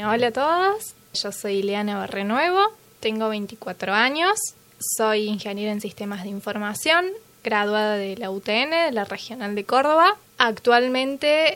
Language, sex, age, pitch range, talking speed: Spanish, female, 20-39, 205-270 Hz, 135 wpm